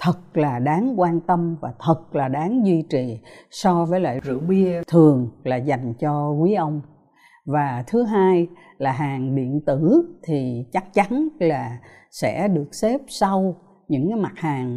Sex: female